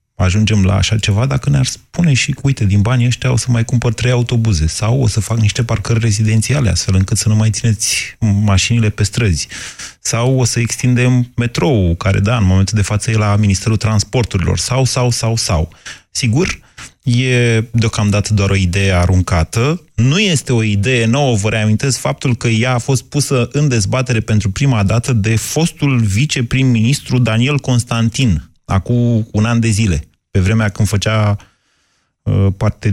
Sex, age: male, 30-49